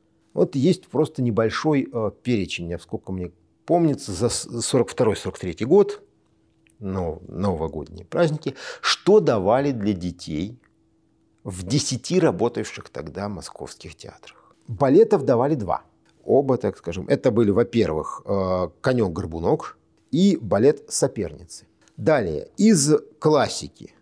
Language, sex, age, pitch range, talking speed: Russian, male, 50-69, 95-130 Hz, 105 wpm